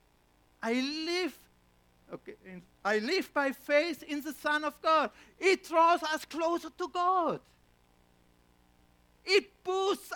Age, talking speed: 60-79, 125 wpm